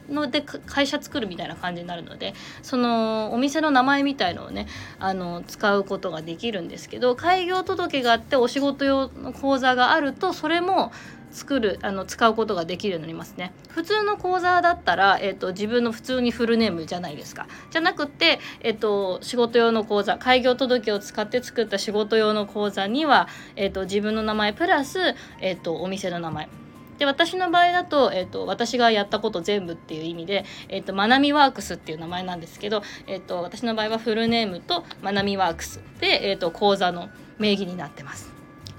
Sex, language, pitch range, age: female, Japanese, 185-265 Hz, 20-39